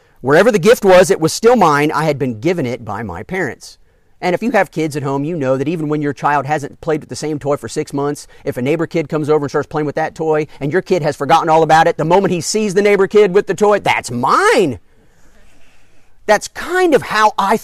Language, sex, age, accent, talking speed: English, male, 40-59, American, 260 wpm